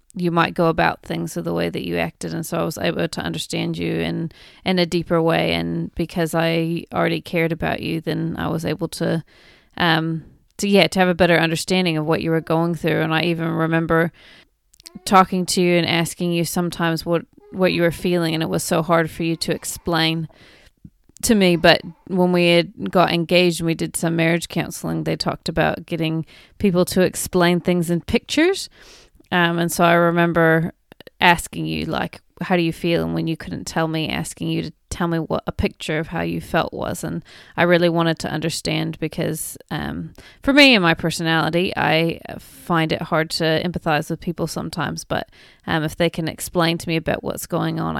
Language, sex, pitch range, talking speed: English, female, 160-175 Hz, 205 wpm